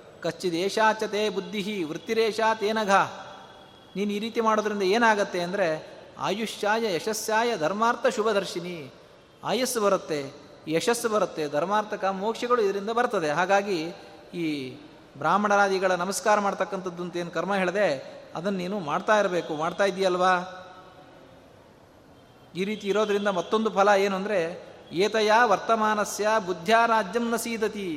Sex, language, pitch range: male, Kannada, 185-220 Hz